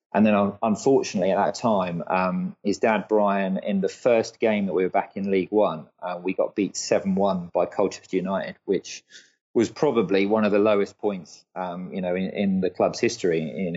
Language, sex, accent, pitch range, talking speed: English, male, British, 95-110 Hz, 200 wpm